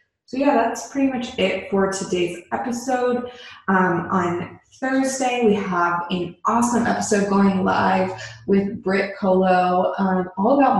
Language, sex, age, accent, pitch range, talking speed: English, female, 20-39, American, 185-240 Hz, 135 wpm